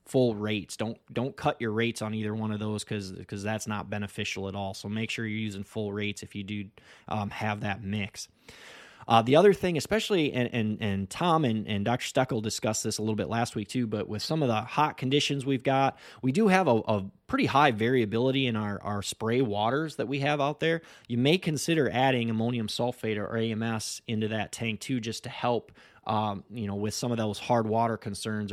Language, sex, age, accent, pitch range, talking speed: English, male, 20-39, American, 105-125 Hz, 220 wpm